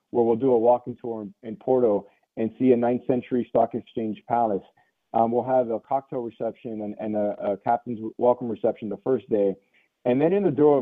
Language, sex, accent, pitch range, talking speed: English, male, American, 115-130 Hz, 210 wpm